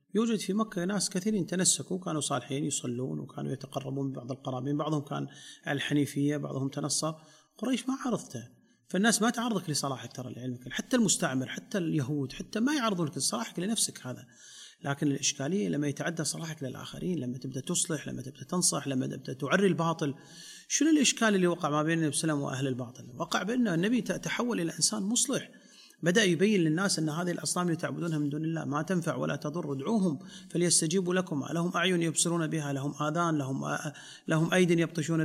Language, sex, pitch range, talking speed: Arabic, male, 150-210 Hz, 165 wpm